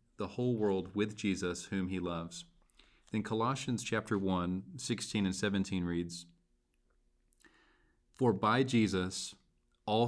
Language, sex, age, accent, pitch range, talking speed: English, male, 40-59, American, 90-115 Hz, 120 wpm